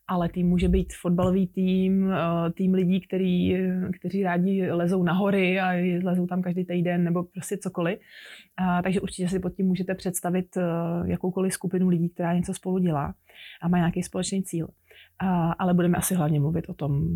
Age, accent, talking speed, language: 20-39, native, 165 wpm, Czech